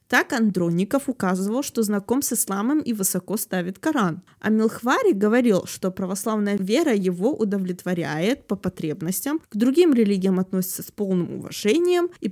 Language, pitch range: Russian, 185-235 Hz